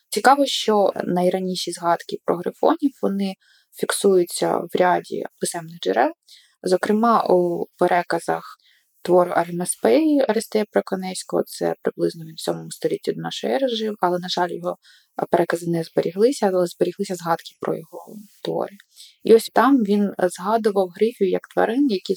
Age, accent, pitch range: 20-39, native, 175-220 Hz